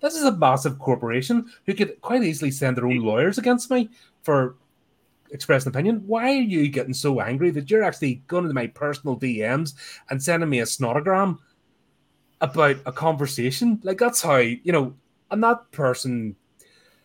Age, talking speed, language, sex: 30-49, 170 wpm, English, male